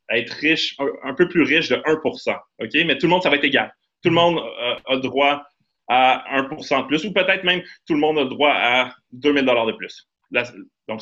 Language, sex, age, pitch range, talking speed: French, male, 30-49, 125-160 Hz, 230 wpm